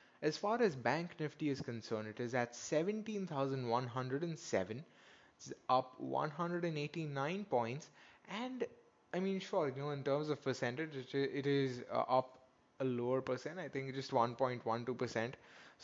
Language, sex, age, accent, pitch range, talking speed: English, male, 20-39, Indian, 130-165 Hz, 130 wpm